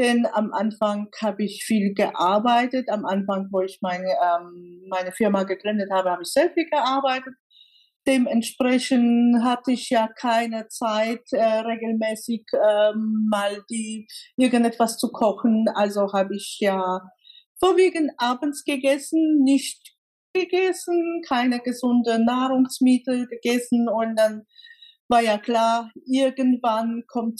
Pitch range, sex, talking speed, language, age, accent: 215-255 Hz, female, 120 wpm, German, 50-69, German